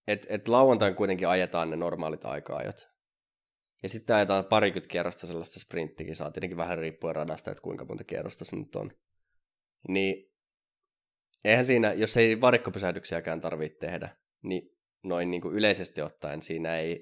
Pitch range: 85-105 Hz